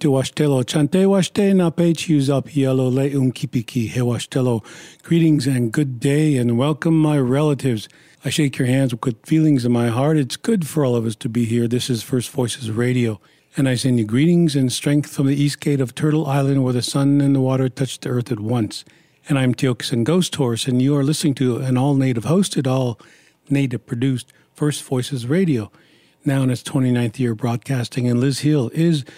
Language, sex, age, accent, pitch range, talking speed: English, male, 50-69, American, 125-150 Hz, 185 wpm